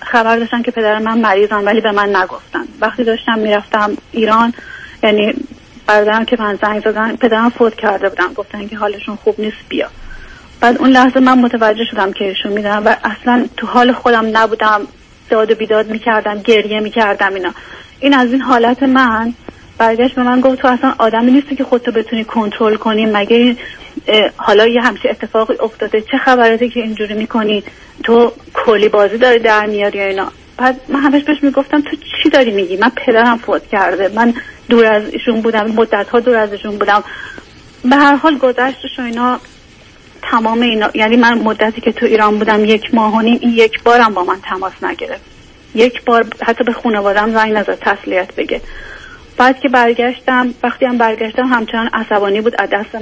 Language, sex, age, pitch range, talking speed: Persian, female, 30-49, 215-250 Hz, 170 wpm